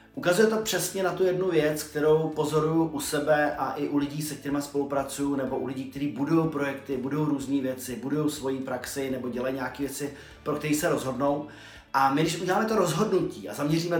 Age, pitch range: 30-49, 135-155 Hz